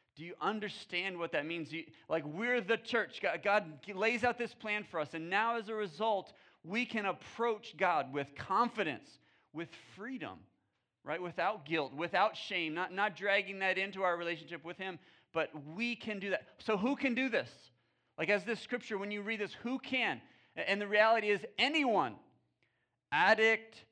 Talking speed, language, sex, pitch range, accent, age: 175 wpm, English, male, 155-215 Hz, American, 40-59